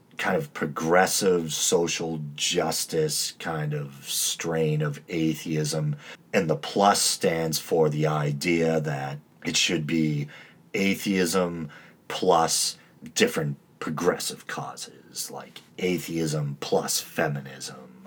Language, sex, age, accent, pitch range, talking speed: English, male, 40-59, American, 70-80 Hz, 100 wpm